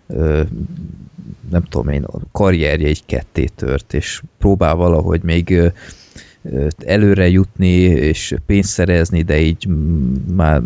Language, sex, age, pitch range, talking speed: Hungarian, male, 30-49, 80-95 Hz, 105 wpm